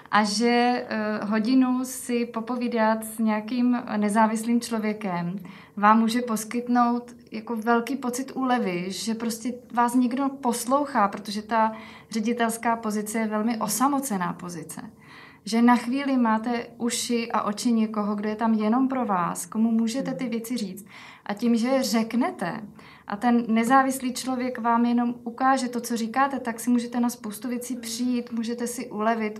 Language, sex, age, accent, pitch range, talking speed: Czech, female, 20-39, native, 215-240 Hz, 145 wpm